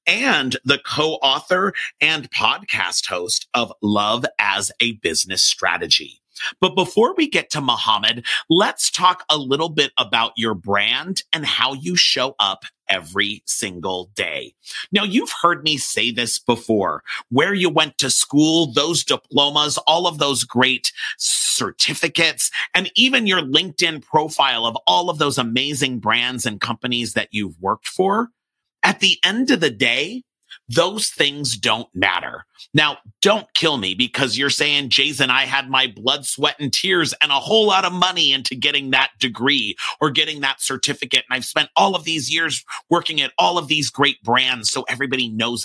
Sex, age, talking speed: male, 40-59, 165 wpm